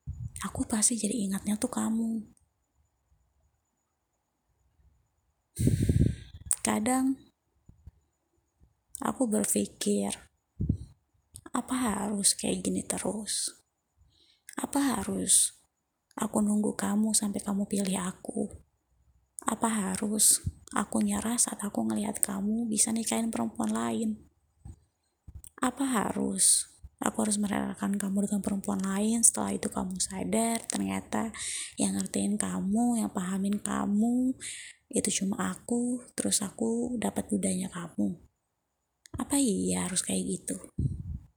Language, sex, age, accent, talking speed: Indonesian, female, 20-39, native, 100 wpm